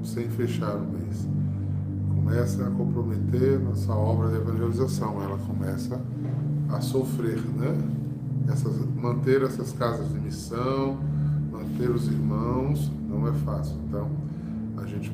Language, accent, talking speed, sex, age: Portuguese, Brazilian, 125 wpm, male, 20-39